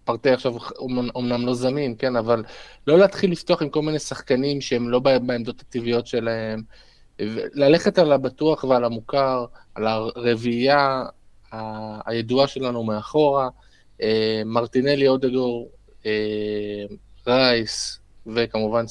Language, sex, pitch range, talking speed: Hebrew, male, 110-145 Hz, 105 wpm